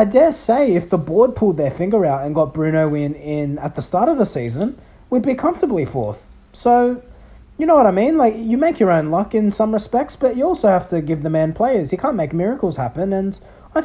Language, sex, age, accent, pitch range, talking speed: English, male, 30-49, Australian, 145-210 Hz, 245 wpm